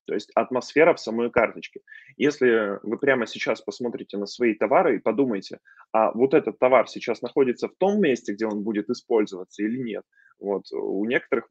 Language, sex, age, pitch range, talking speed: Russian, male, 20-39, 105-145 Hz, 170 wpm